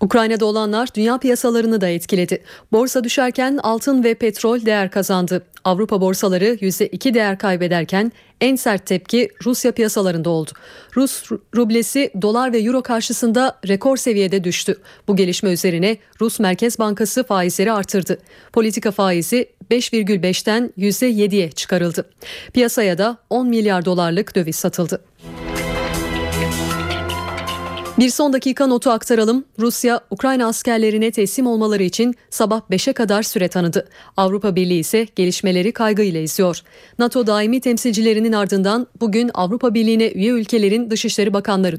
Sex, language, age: female, Turkish, 30-49